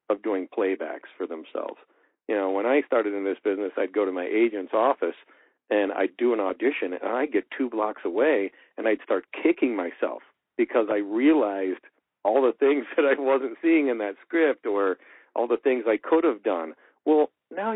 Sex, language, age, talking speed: male, English, 50-69, 195 wpm